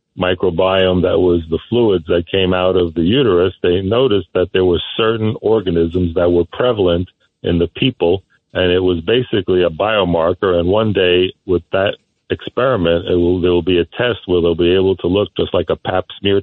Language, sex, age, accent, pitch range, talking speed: English, male, 60-79, American, 85-95 Hz, 190 wpm